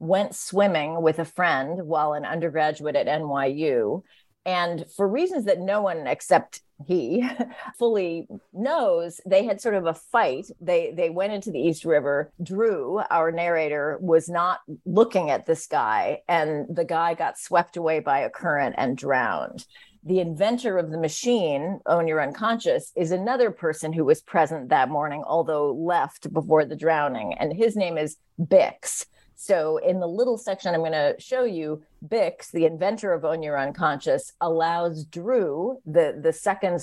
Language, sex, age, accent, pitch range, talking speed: English, female, 40-59, American, 160-215 Hz, 165 wpm